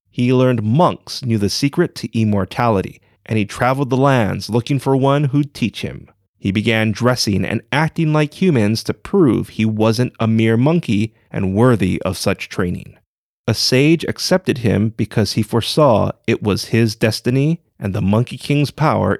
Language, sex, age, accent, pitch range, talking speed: English, male, 30-49, American, 105-140 Hz, 170 wpm